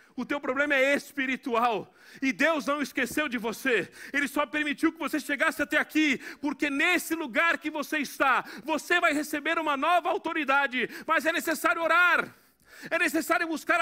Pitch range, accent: 250-315 Hz, Brazilian